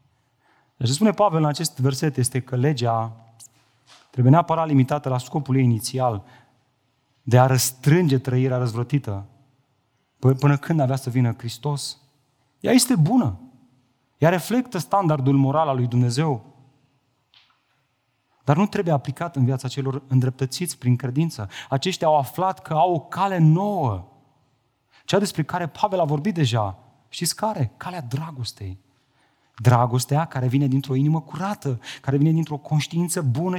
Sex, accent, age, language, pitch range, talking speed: male, native, 30-49, Romanian, 125-155 Hz, 140 wpm